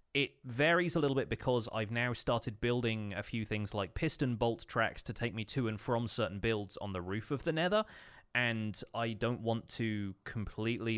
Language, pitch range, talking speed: English, 100-115 Hz, 200 wpm